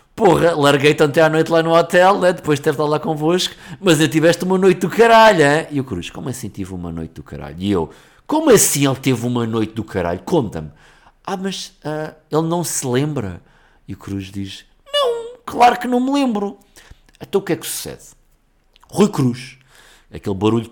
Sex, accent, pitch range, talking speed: male, Portuguese, 130-185 Hz, 205 wpm